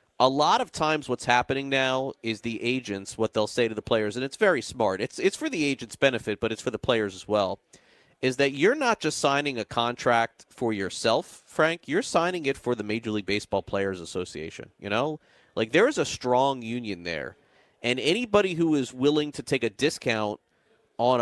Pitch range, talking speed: 115-145 Hz, 205 wpm